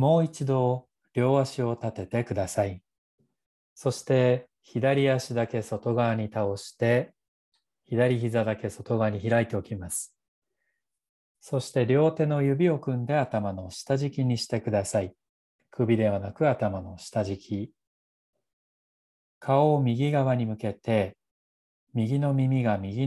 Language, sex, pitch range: Japanese, male, 100-130 Hz